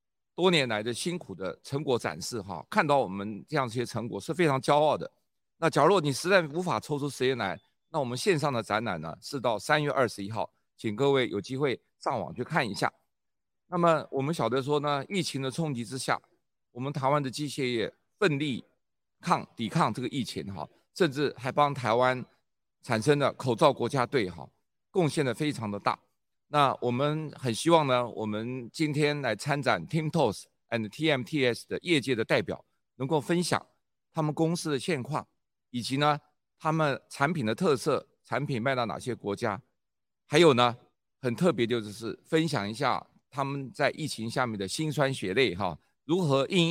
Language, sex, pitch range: Chinese, male, 115-155 Hz